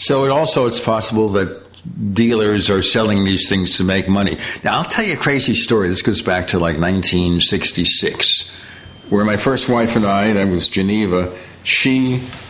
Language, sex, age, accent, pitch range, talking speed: English, male, 60-79, American, 95-120 Hz, 180 wpm